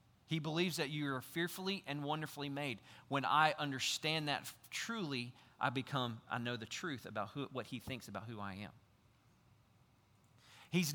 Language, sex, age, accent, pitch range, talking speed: English, male, 40-59, American, 120-170 Hz, 160 wpm